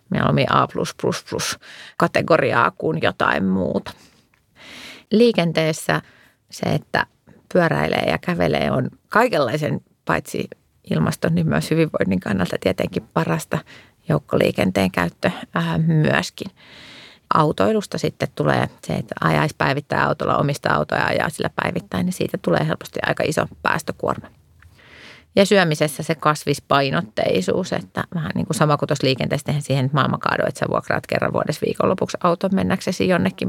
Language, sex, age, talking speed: Finnish, female, 30-49, 120 wpm